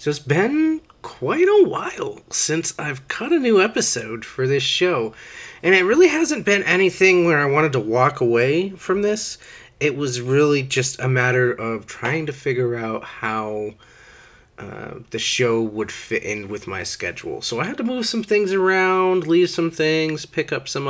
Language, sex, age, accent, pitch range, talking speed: English, male, 30-49, American, 115-170 Hz, 185 wpm